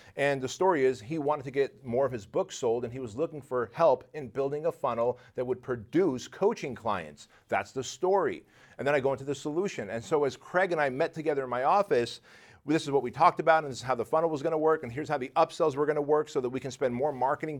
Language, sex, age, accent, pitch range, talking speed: English, male, 40-59, American, 120-155 Hz, 275 wpm